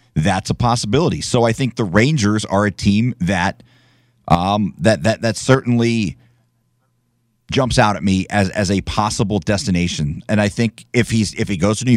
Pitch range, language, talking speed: 105-130 Hz, English, 180 wpm